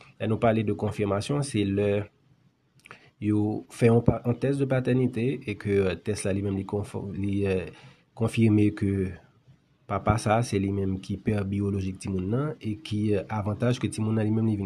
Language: French